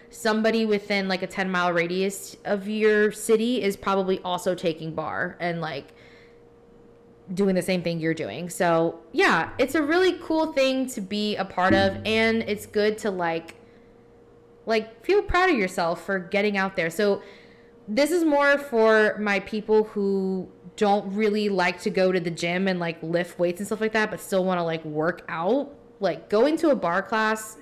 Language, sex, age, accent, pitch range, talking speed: English, female, 20-39, American, 180-235 Hz, 185 wpm